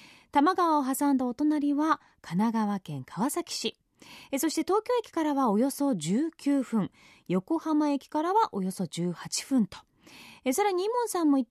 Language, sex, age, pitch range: Japanese, female, 30-49, 205-310 Hz